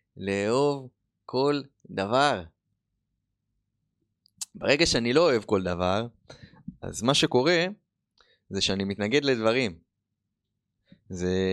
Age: 20-39